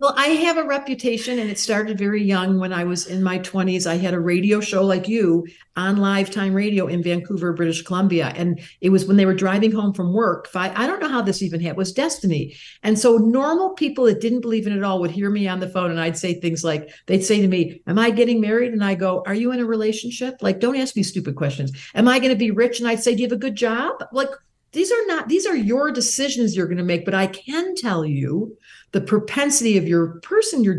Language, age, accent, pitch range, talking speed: English, 50-69, American, 185-240 Hz, 255 wpm